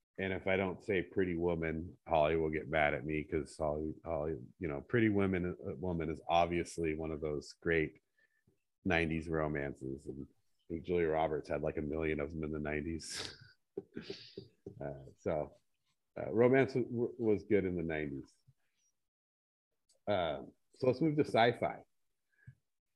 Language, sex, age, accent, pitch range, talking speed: English, male, 40-59, American, 80-100 Hz, 140 wpm